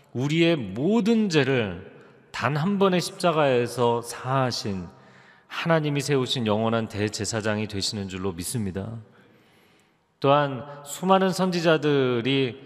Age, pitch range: 40-59, 110-150 Hz